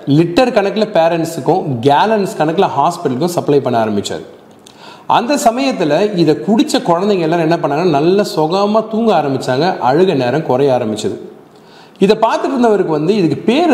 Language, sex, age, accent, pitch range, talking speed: Tamil, male, 30-49, native, 145-210 Hz, 135 wpm